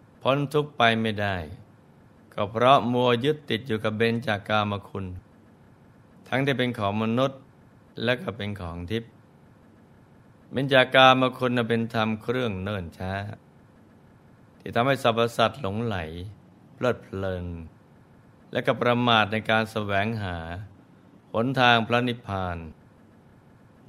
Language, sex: Thai, male